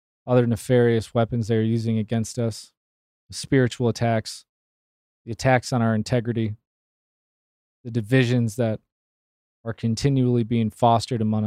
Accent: American